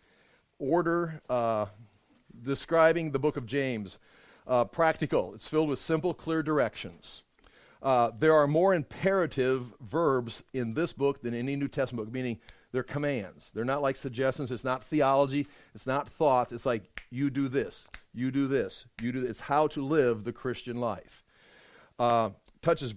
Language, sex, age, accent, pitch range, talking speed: English, male, 50-69, American, 120-145 Hz, 160 wpm